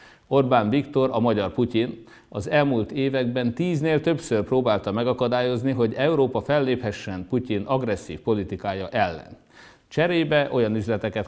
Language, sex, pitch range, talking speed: Hungarian, male, 105-135 Hz, 115 wpm